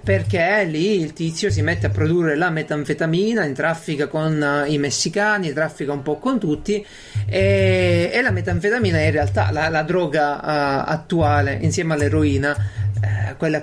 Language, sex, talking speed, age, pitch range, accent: Italian, male, 165 wpm, 40-59, 140-205 Hz, native